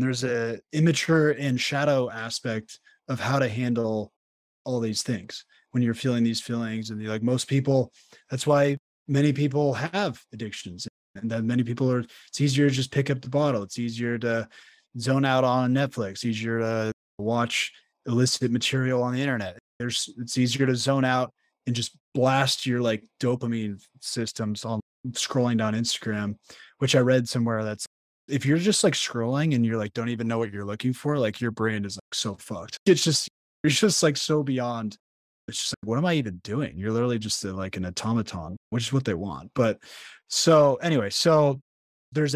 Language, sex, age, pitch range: English, male, 20-39, 115-135 Hz